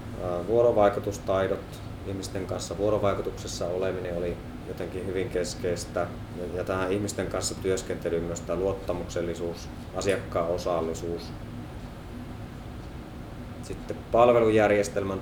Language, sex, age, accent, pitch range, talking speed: Finnish, male, 30-49, native, 85-105 Hz, 80 wpm